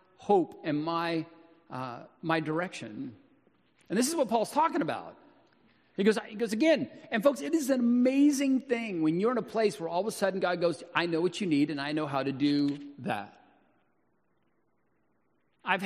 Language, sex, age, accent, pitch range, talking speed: English, male, 40-59, American, 145-215 Hz, 190 wpm